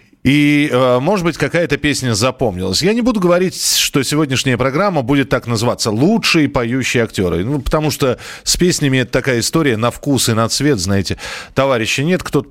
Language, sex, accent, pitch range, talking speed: Russian, male, native, 110-150 Hz, 175 wpm